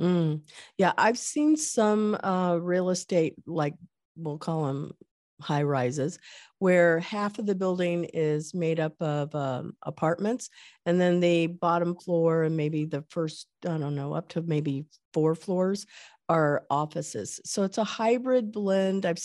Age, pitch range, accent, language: 50-69, 155-180 Hz, American, English